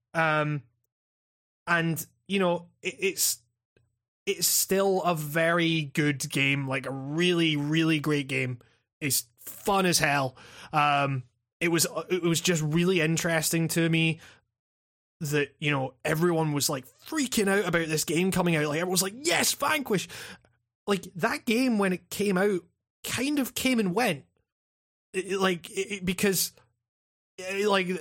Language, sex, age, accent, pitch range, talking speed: English, male, 20-39, British, 135-175 Hz, 150 wpm